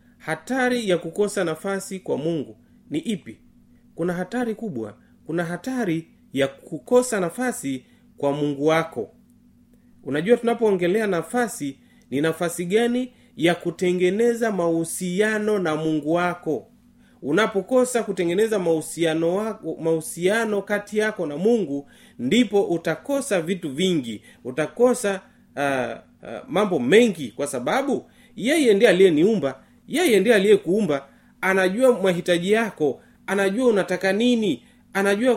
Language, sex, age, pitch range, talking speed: Swahili, male, 30-49, 170-235 Hz, 110 wpm